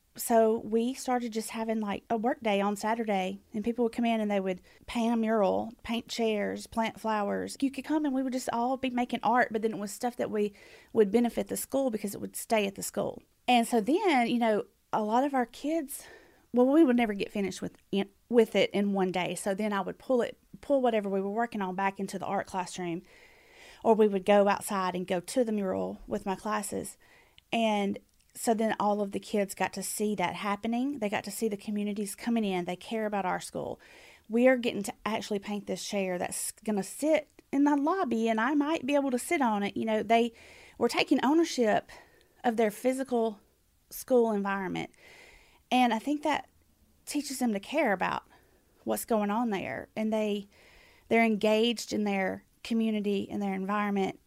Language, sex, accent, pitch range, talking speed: English, female, American, 200-245 Hz, 210 wpm